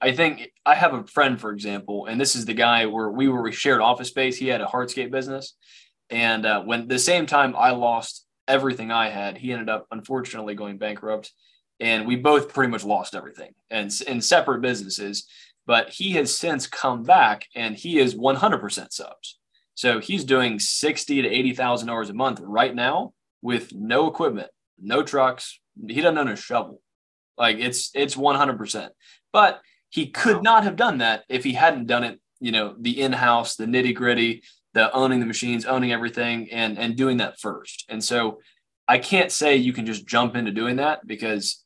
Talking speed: 195 wpm